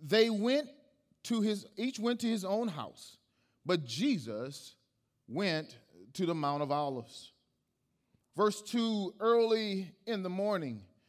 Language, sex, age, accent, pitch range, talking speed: English, male, 40-59, American, 140-215 Hz, 130 wpm